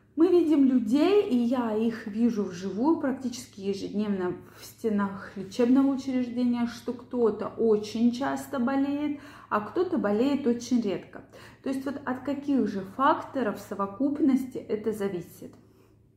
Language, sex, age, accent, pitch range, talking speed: Russian, female, 20-39, native, 210-270 Hz, 125 wpm